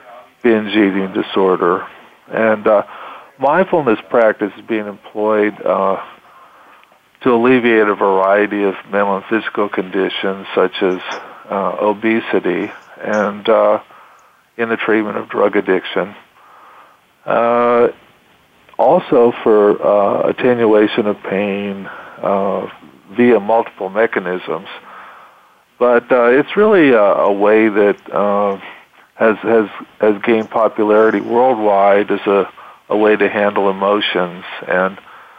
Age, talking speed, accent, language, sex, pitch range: 50-69, 110 wpm, American, English, male, 100-115 Hz